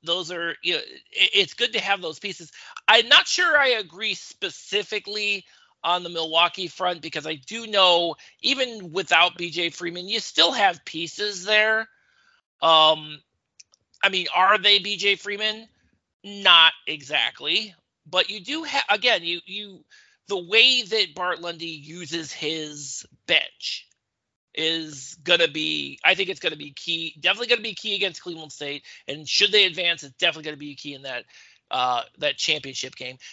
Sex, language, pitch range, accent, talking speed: male, English, 160-220 Hz, American, 160 wpm